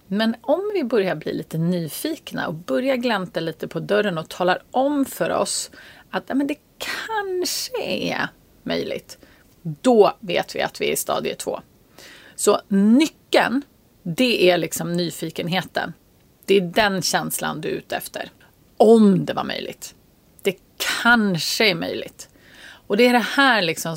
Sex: female